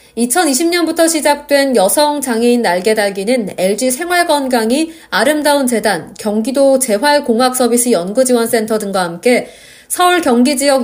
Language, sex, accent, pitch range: Korean, female, native, 225-290 Hz